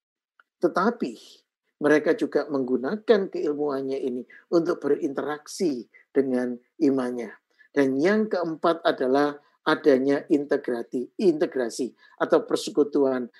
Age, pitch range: 50-69, 140-205 Hz